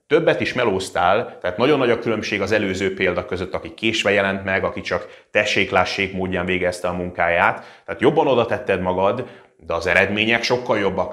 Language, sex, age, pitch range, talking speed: Hungarian, male, 30-49, 95-120 Hz, 180 wpm